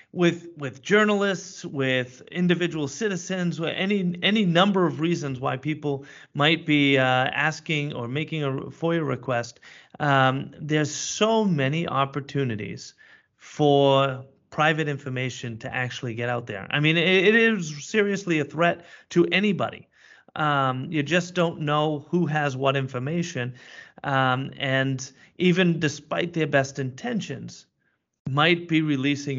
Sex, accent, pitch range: male, American, 135-175 Hz